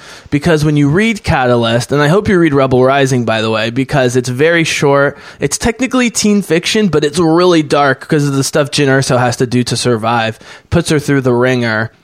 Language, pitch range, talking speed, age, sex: English, 135-180 Hz, 215 wpm, 20-39, male